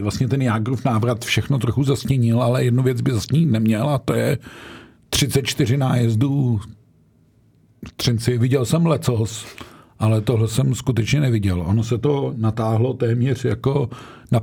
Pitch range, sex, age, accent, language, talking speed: 115-135 Hz, male, 50-69, native, Czech, 145 wpm